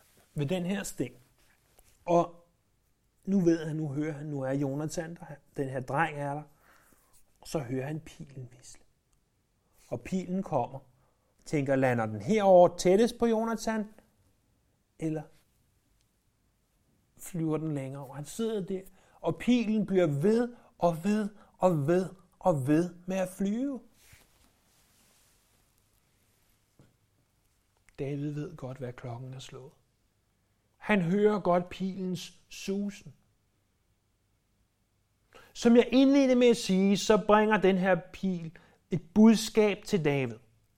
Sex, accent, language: male, native, Danish